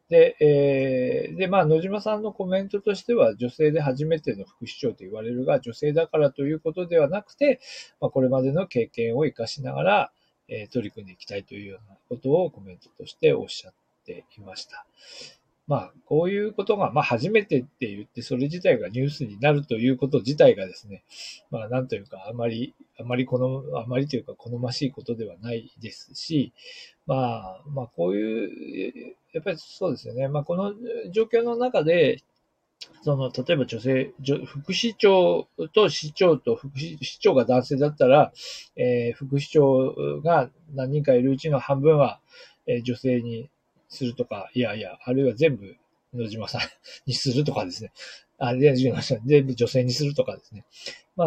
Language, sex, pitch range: Japanese, male, 125-185 Hz